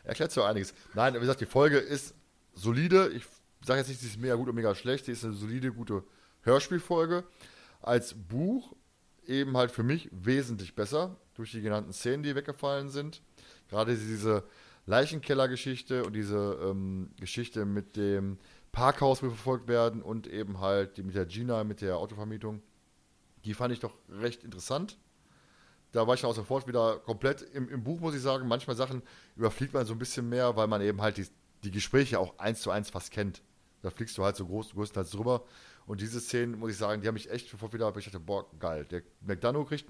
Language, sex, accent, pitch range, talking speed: German, male, German, 105-130 Hz, 205 wpm